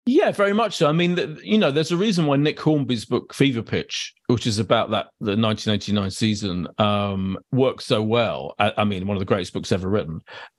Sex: male